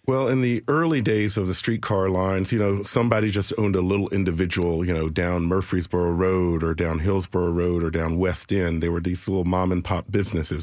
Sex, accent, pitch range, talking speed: male, American, 90-110 Hz, 215 wpm